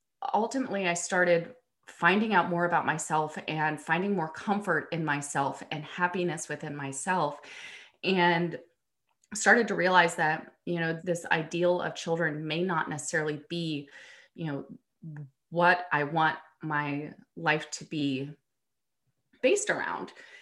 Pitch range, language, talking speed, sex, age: 150-180 Hz, English, 130 wpm, female, 30-49